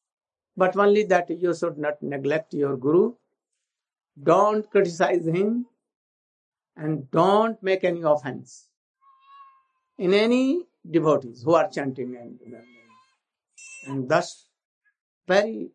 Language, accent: English, Indian